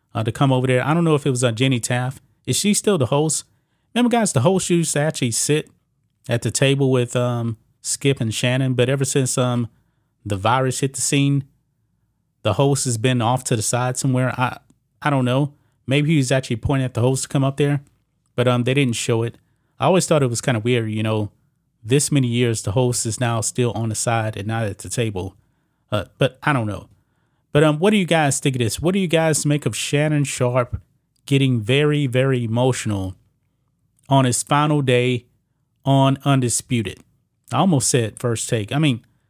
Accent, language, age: American, English, 30-49